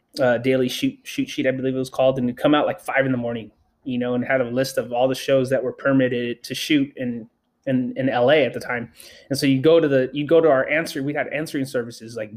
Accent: American